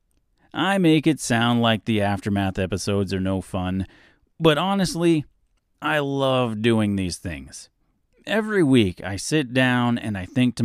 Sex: male